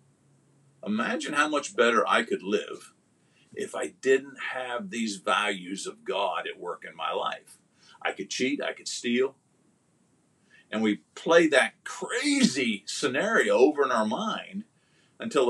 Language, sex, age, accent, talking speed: English, male, 50-69, American, 145 wpm